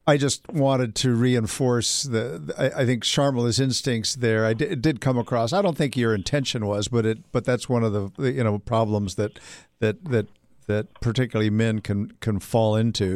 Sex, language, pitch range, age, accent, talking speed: male, English, 110-135 Hz, 50-69, American, 210 wpm